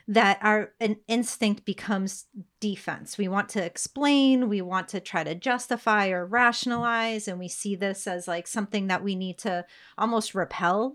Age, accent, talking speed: 30-49, American, 170 wpm